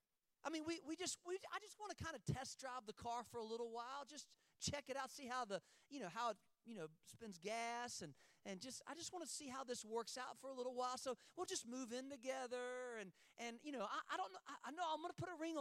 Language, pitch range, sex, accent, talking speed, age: English, 215-315 Hz, male, American, 275 wpm, 40-59